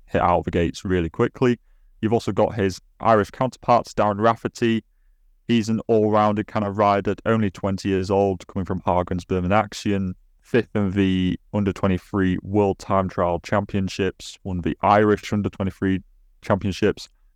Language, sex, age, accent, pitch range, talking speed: English, male, 20-39, British, 90-105 Hz, 160 wpm